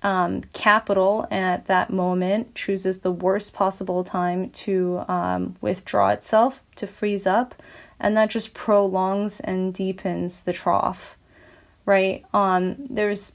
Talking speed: 125 wpm